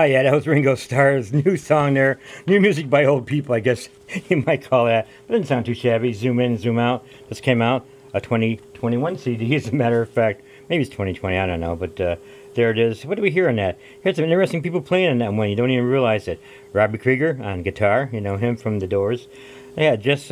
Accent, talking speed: American, 245 wpm